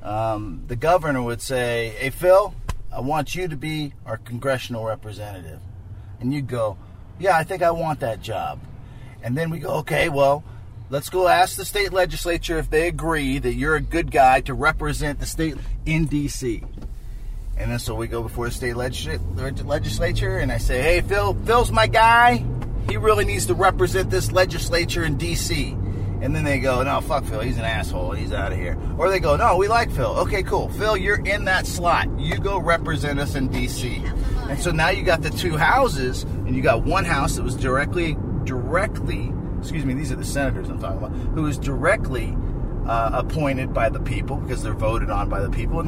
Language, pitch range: English, 105-140 Hz